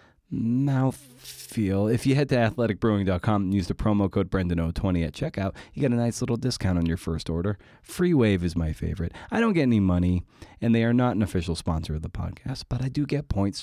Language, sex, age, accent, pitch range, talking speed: English, male, 30-49, American, 90-120 Hz, 215 wpm